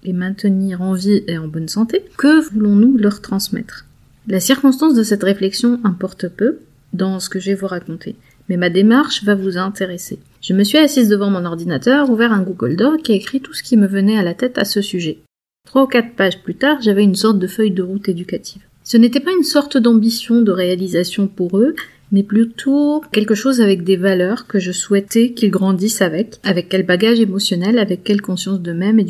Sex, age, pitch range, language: female, 30-49, 185-230 Hz, French